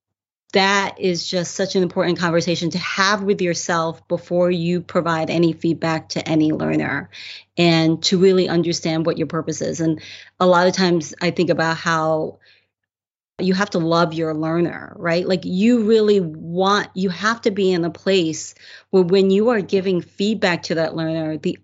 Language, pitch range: English, 165-190 Hz